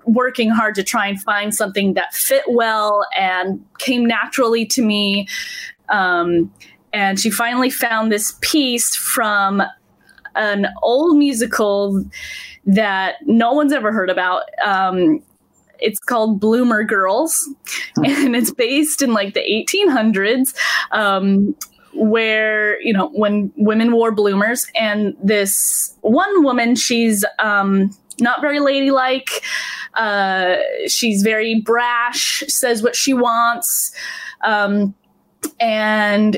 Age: 10-29